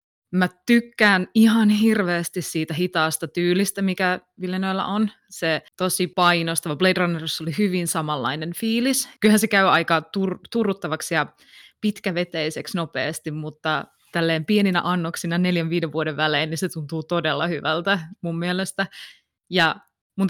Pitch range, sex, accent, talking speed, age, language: 160-195 Hz, female, native, 135 wpm, 20-39, Finnish